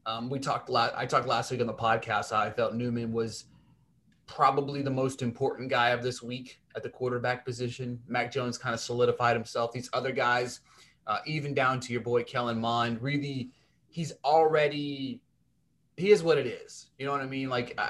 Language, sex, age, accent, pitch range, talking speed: English, male, 30-49, American, 115-135 Hz, 200 wpm